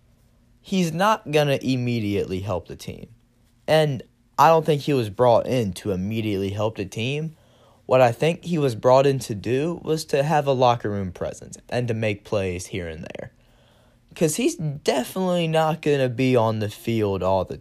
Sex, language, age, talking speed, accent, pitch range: male, English, 10-29, 190 wpm, American, 105-130 Hz